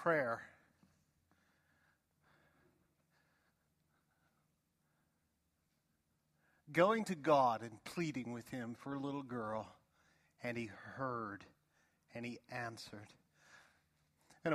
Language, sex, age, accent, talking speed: English, male, 50-69, American, 80 wpm